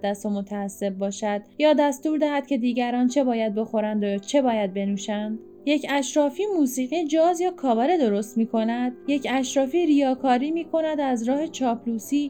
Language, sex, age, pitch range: Persian, female, 10-29, 230-290 Hz